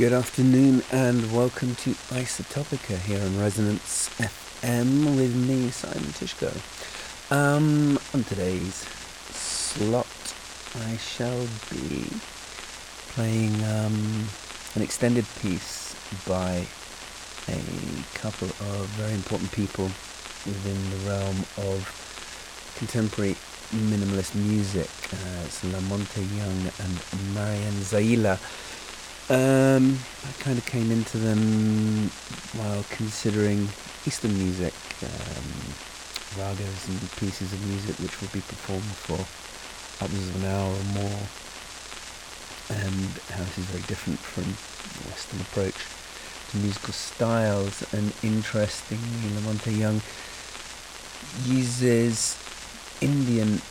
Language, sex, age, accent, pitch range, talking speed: English, male, 40-59, British, 95-115 Hz, 105 wpm